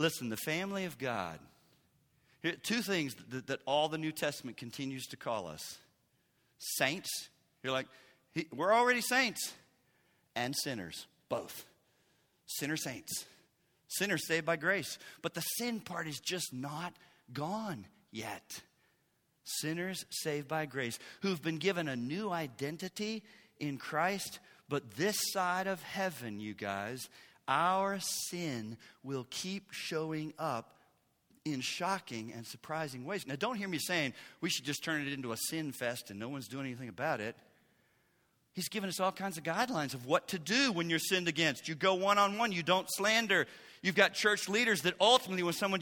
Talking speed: 160 wpm